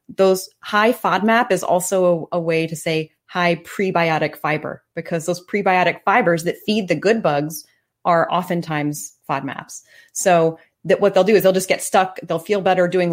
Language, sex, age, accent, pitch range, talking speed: English, female, 30-49, American, 165-200 Hz, 180 wpm